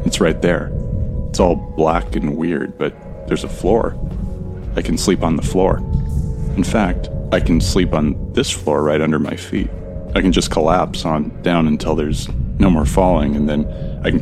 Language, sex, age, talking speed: English, male, 30-49, 190 wpm